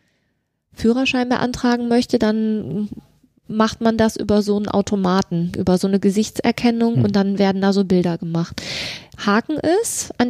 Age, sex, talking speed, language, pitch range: 20-39, female, 145 wpm, German, 200-245 Hz